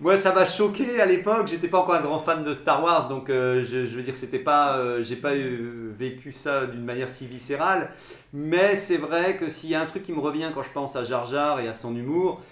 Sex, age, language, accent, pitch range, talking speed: male, 40-59, French, French, 140-180 Hz, 265 wpm